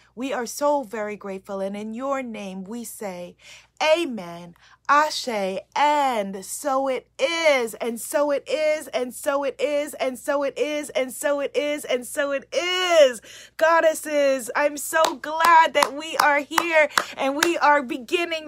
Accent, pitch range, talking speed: American, 280-330 Hz, 160 wpm